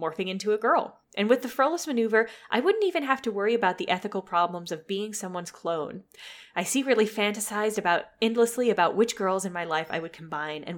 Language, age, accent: English, 10-29, American